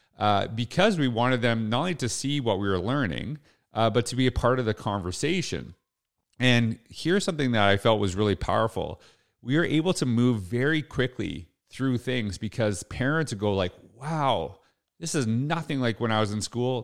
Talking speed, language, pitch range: 195 wpm, English, 95-125 Hz